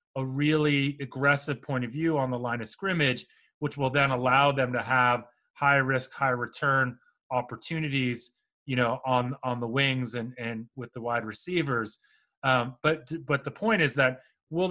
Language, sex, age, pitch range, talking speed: English, male, 30-49, 125-145 Hz, 175 wpm